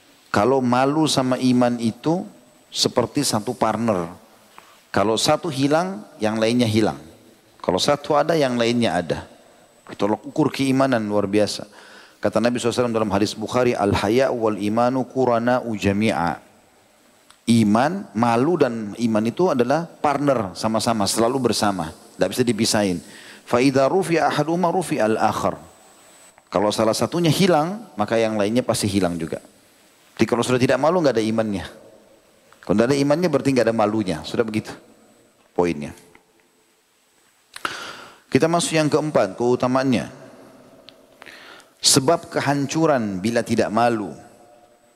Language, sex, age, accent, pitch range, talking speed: Indonesian, male, 40-59, native, 105-130 Hz, 125 wpm